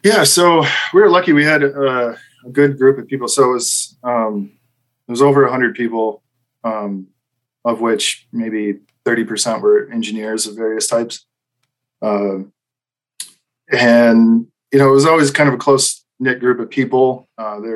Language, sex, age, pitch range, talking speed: English, male, 20-39, 115-135 Hz, 170 wpm